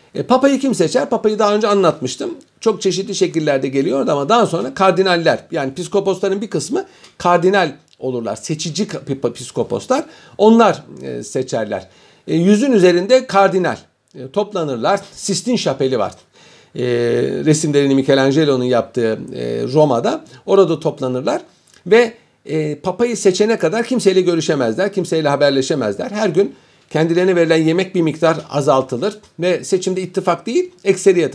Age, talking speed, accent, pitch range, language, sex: 50-69, 130 wpm, native, 135-195 Hz, Turkish, male